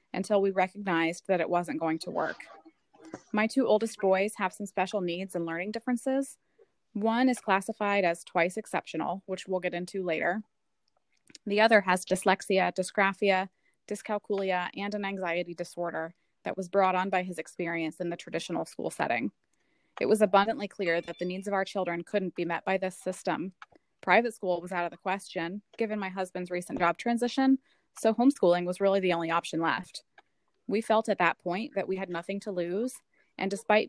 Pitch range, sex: 180-215 Hz, female